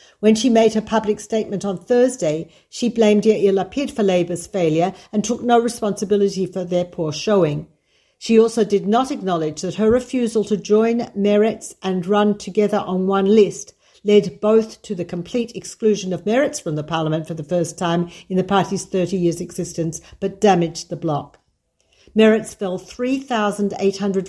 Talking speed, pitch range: 170 wpm, 170-215 Hz